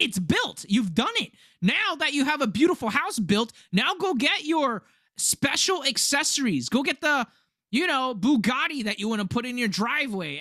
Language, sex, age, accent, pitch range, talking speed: English, male, 20-39, American, 175-235 Hz, 190 wpm